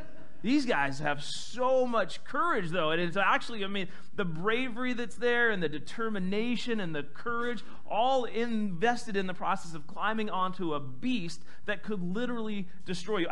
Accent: American